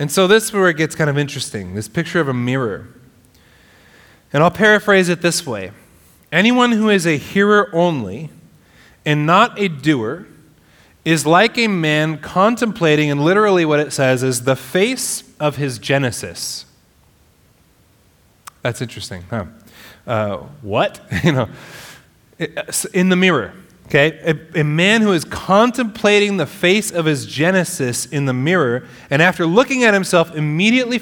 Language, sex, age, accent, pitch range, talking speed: English, male, 30-49, American, 130-190 Hz, 150 wpm